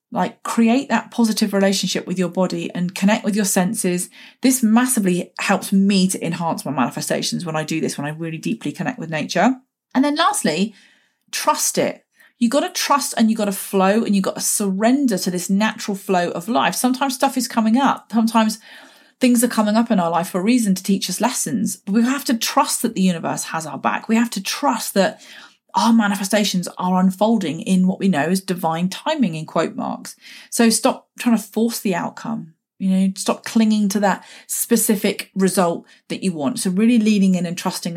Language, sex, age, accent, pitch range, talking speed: English, female, 30-49, British, 175-230 Hz, 205 wpm